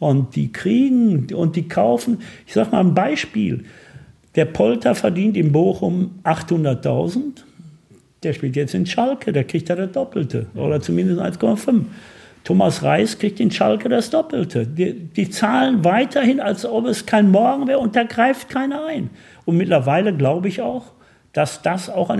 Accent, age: German, 60-79